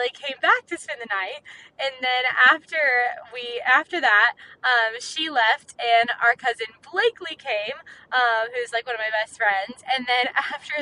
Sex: female